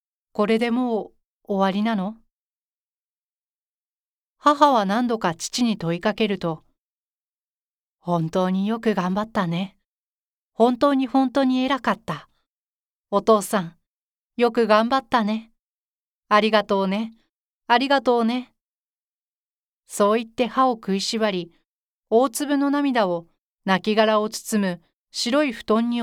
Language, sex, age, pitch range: Japanese, female, 40-59, 190-240 Hz